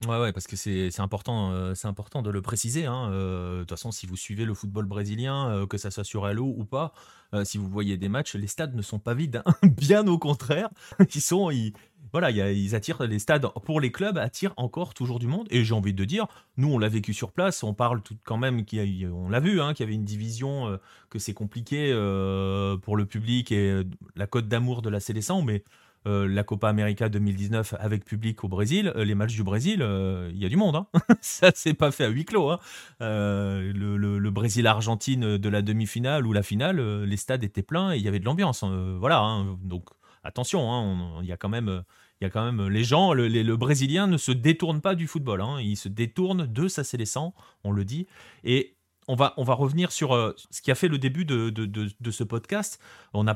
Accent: French